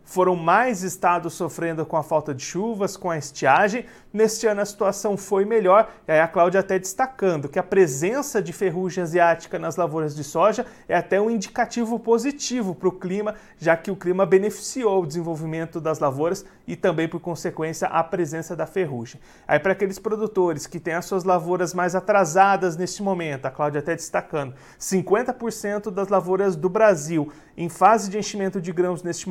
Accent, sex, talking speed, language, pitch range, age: Brazilian, male, 180 wpm, Portuguese, 170-205 Hz, 40-59